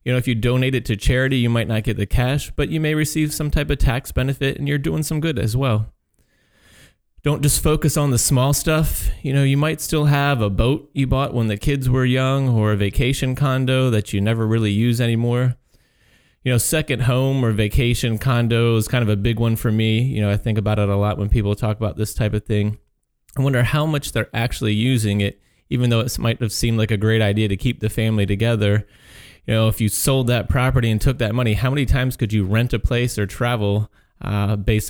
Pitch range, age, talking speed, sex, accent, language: 105-130 Hz, 30-49, 240 wpm, male, American, English